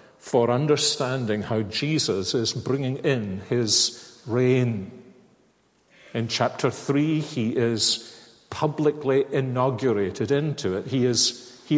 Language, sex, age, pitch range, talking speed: English, male, 50-69, 120-155 Hz, 105 wpm